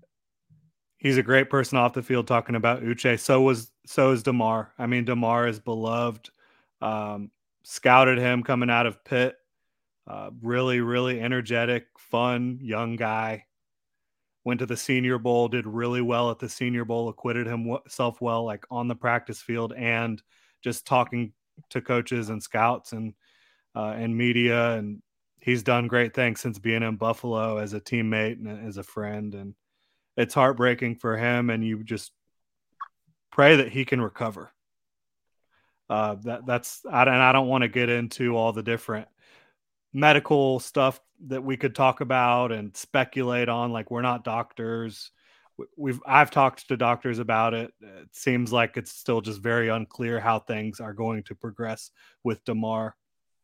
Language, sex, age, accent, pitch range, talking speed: English, male, 30-49, American, 115-125 Hz, 165 wpm